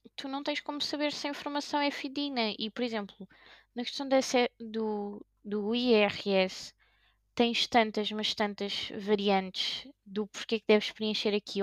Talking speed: 150 wpm